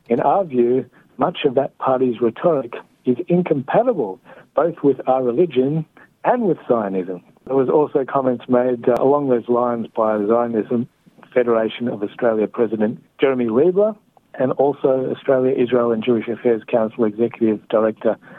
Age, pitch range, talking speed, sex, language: 60-79, 115-135 Hz, 140 wpm, male, Hebrew